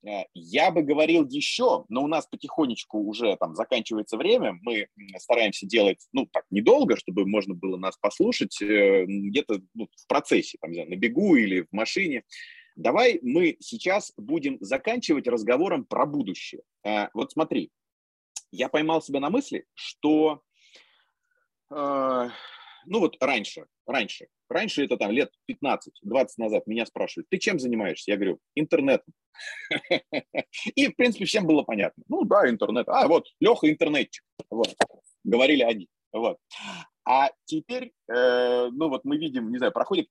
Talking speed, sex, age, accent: 135 wpm, male, 30-49, native